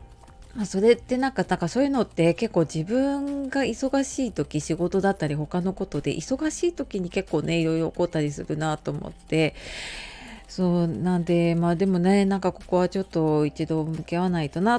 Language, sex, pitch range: Japanese, female, 160-200 Hz